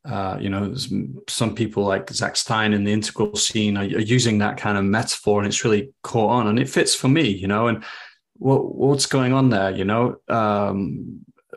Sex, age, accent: male, 30-49, British